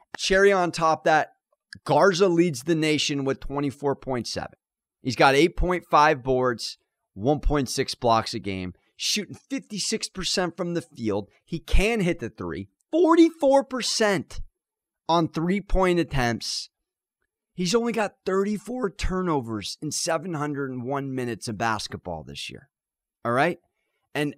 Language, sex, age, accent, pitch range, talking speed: English, male, 30-49, American, 140-195 Hz, 115 wpm